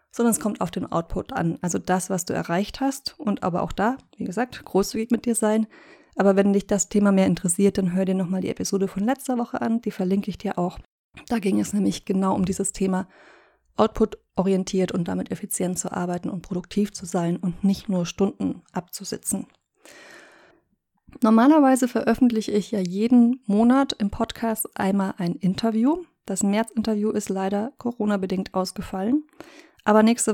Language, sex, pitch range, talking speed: German, female, 190-230 Hz, 175 wpm